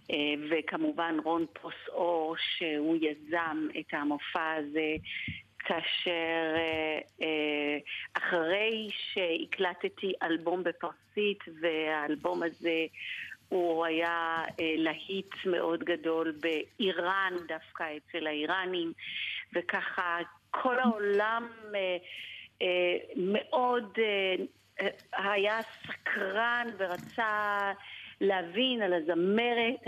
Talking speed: 85 wpm